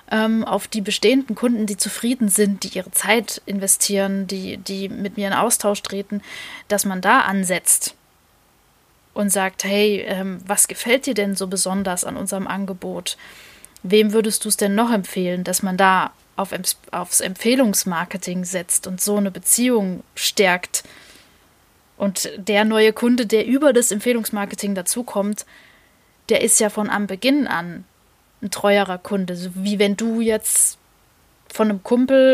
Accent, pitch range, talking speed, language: German, 195-220 Hz, 145 wpm, German